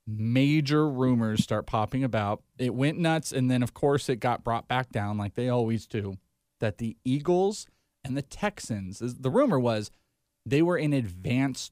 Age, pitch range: 30-49, 110-140 Hz